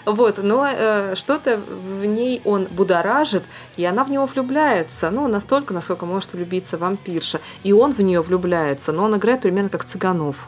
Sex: female